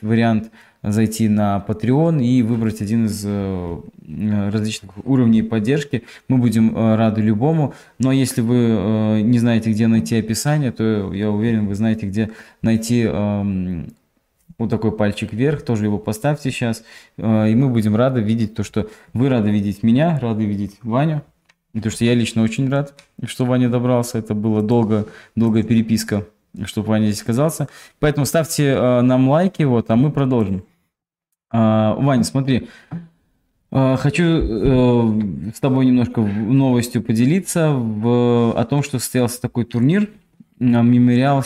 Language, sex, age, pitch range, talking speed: Russian, male, 20-39, 110-130 Hz, 140 wpm